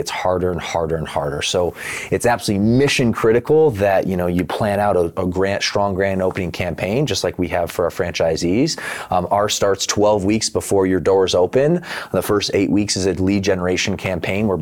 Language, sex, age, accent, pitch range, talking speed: English, male, 30-49, American, 90-100 Hz, 205 wpm